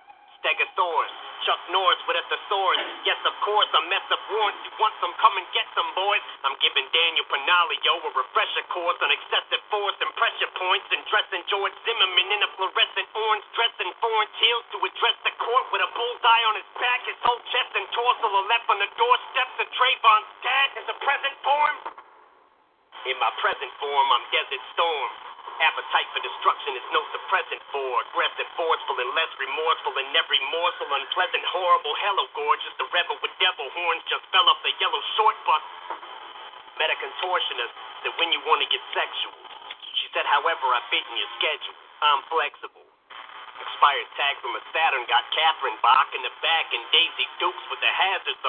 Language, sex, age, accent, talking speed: English, male, 40-59, American, 185 wpm